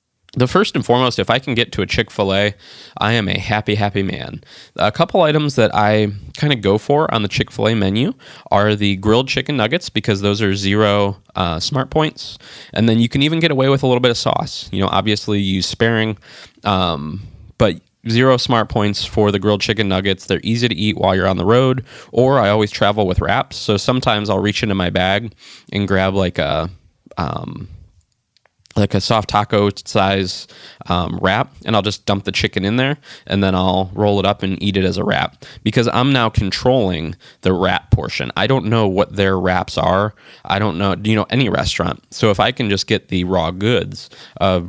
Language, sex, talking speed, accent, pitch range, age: English, male, 210 wpm, American, 95-115 Hz, 20-39